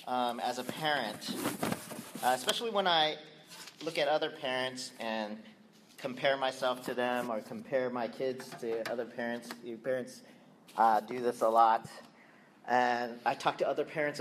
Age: 40-59